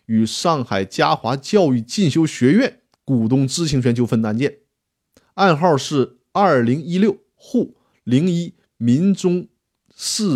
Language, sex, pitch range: Chinese, male, 125-200 Hz